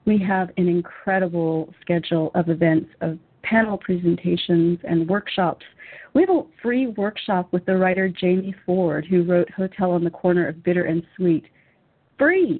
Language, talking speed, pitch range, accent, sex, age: English, 155 wpm, 175-215 Hz, American, female, 40-59